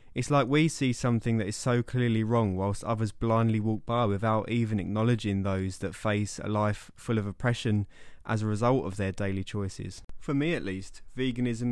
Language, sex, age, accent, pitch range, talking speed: English, male, 20-39, British, 105-125 Hz, 195 wpm